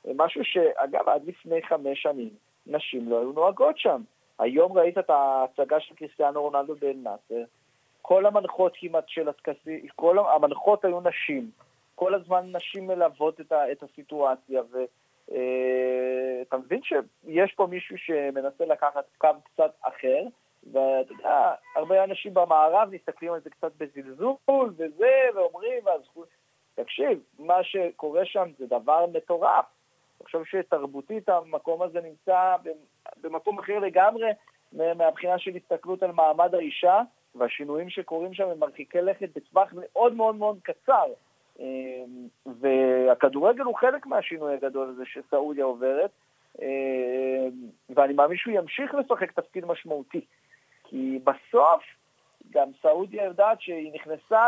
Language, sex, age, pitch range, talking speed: Hebrew, male, 40-59, 140-195 Hz, 120 wpm